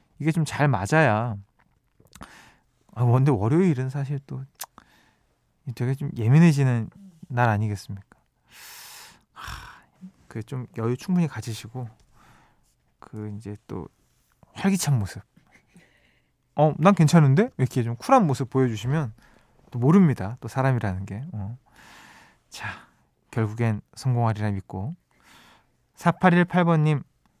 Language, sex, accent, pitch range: Korean, male, native, 115-155 Hz